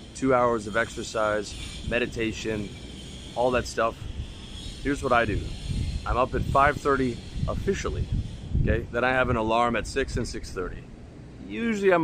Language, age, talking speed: English, 30-49, 145 wpm